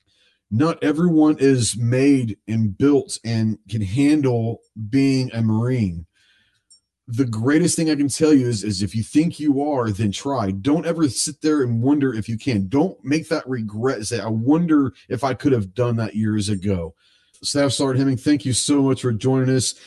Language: English